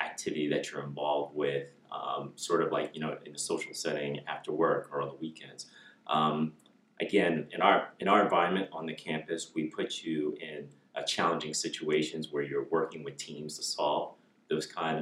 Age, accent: 30-49, American